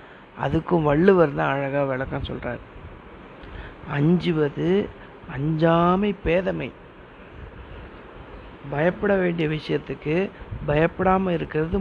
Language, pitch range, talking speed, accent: Tamil, 145-175 Hz, 70 wpm, native